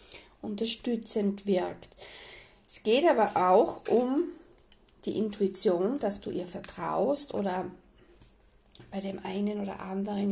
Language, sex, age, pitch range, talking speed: German, female, 50-69, 200-255 Hz, 110 wpm